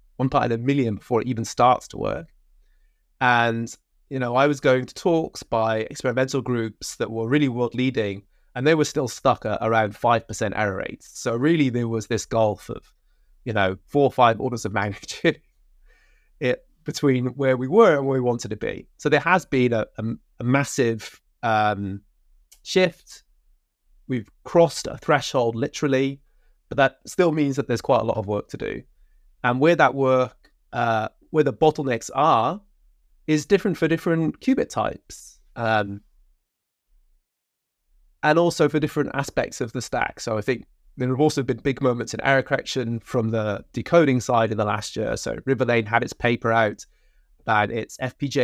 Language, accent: English, British